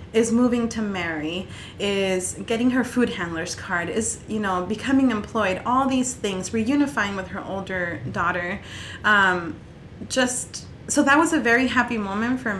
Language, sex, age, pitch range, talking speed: English, female, 30-49, 185-235 Hz, 155 wpm